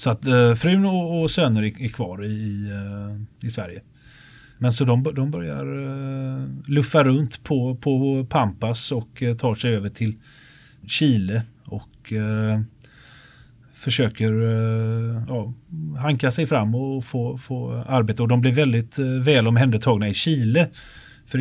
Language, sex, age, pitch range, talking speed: Swedish, male, 30-49, 115-135 Hz, 125 wpm